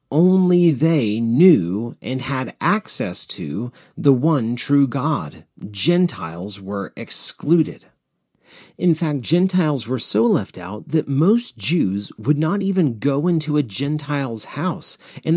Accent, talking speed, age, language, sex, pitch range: American, 130 wpm, 40-59, English, male, 125-175 Hz